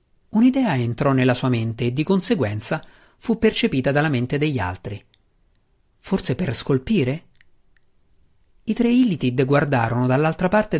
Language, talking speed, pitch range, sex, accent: Italian, 130 wpm, 120-165 Hz, male, native